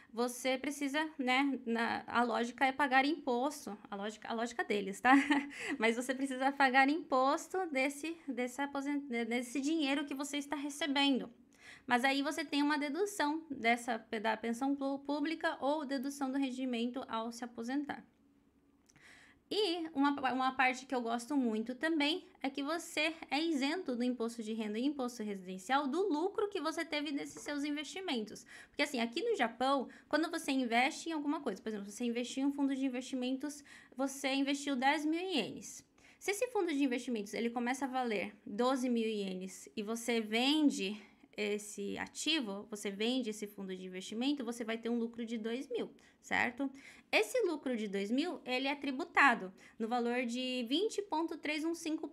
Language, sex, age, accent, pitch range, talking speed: Portuguese, female, 10-29, Brazilian, 240-300 Hz, 160 wpm